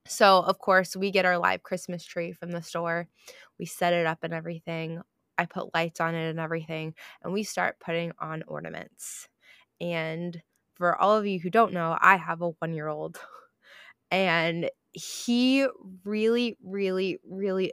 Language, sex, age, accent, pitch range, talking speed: English, female, 20-39, American, 175-245 Hz, 165 wpm